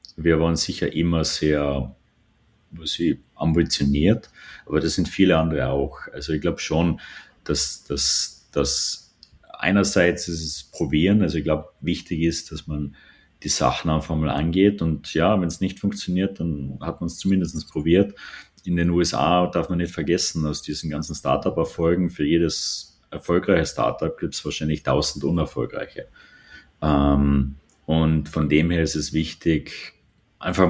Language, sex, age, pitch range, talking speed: German, male, 30-49, 75-85 Hz, 150 wpm